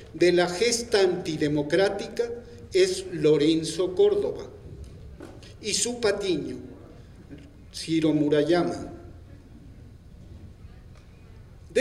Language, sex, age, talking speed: Spanish, male, 50-69, 65 wpm